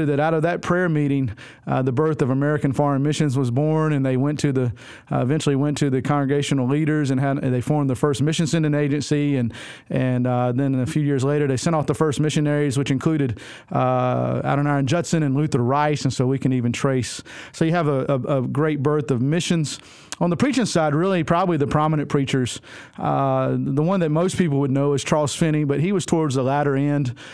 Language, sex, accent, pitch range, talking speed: English, male, American, 135-160 Hz, 225 wpm